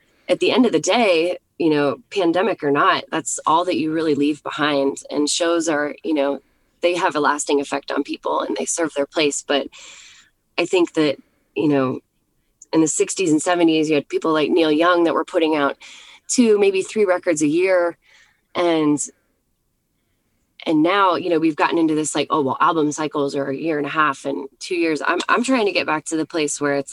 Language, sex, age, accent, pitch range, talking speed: English, female, 20-39, American, 145-175 Hz, 215 wpm